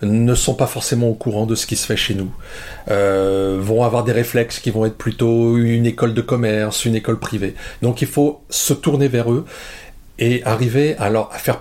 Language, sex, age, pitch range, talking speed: French, male, 40-59, 110-135 Hz, 215 wpm